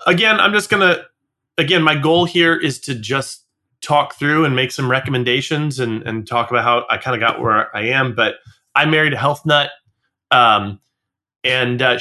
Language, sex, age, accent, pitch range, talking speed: English, male, 30-49, American, 120-150 Hz, 195 wpm